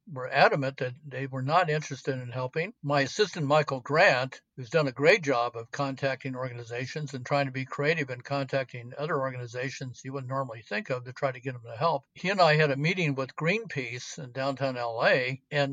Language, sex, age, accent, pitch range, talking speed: English, male, 60-79, American, 130-155 Hz, 205 wpm